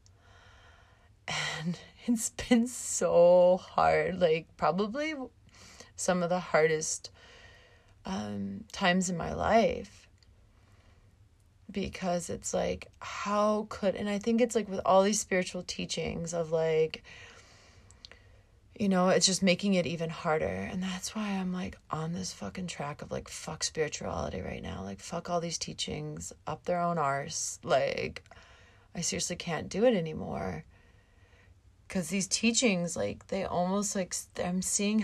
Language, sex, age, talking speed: English, female, 30-49, 140 wpm